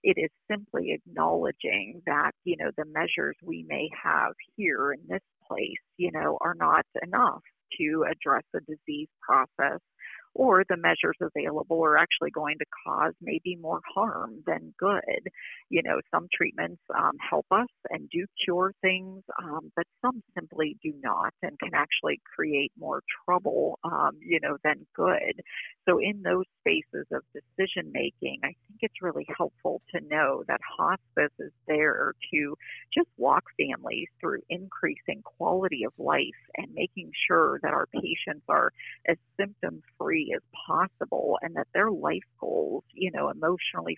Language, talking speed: English, 155 wpm